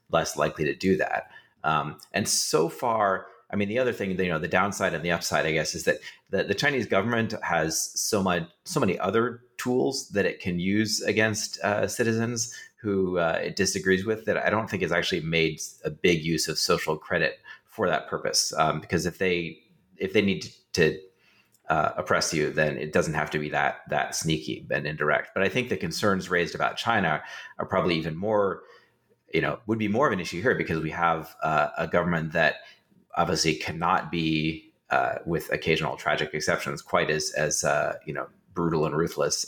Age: 30-49